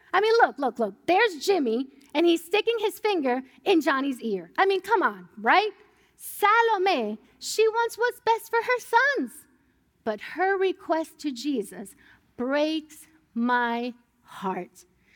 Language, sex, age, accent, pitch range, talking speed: English, female, 40-59, American, 250-390 Hz, 145 wpm